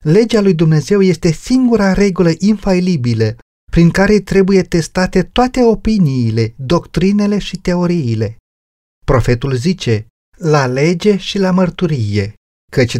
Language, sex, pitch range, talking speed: Romanian, male, 115-190 Hz, 110 wpm